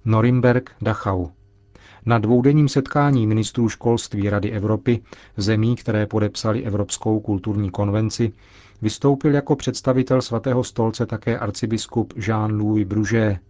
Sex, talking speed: male, 105 wpm